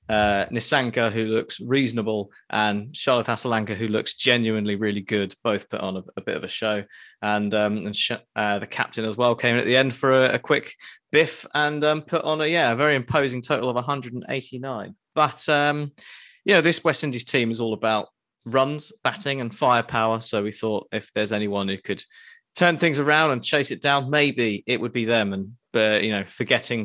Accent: British